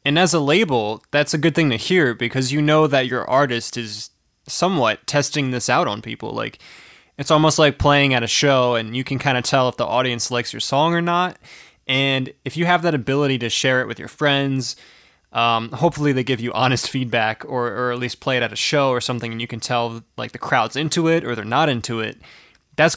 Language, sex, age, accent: English, male, 20-39, American